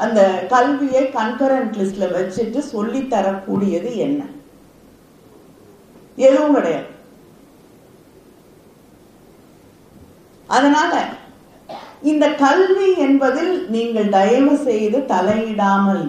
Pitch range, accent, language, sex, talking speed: 215-285 Hz, native, Tamil, female, 45 wpm